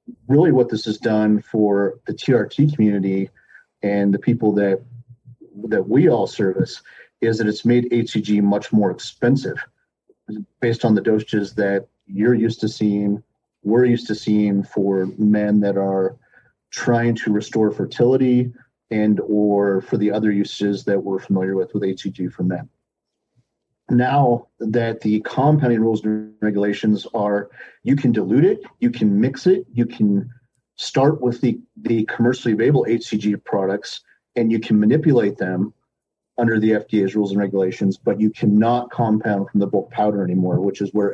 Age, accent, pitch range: 40-59, American, 100-120 Hz